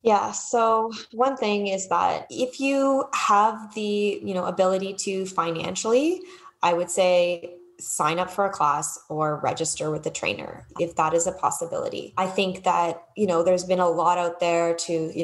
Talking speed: 180 wpm